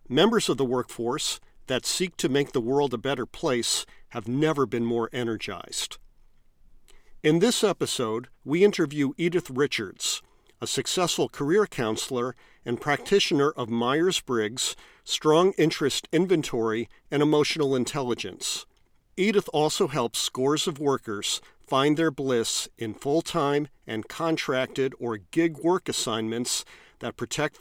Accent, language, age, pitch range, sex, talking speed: American, English, 50-69, 120-155 Hz, male, 130 wpm